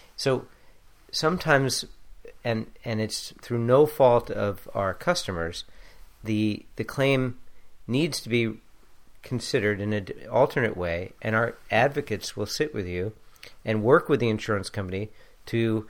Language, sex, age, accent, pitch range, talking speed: English, male, 50-69, American, 105-125 Hz, 140 wpm